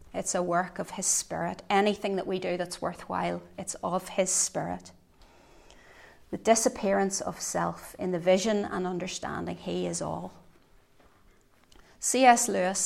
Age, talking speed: 30-49, 140 wpm